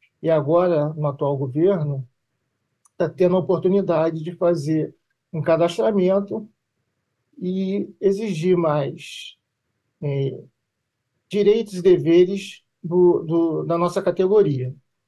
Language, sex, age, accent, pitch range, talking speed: Portuguese, male, 40-59, Brazilian, 140-195 Hz, 90 wpm